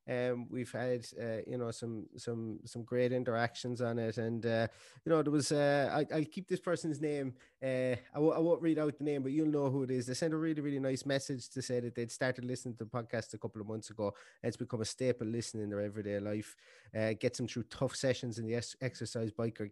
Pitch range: 115-130 Hz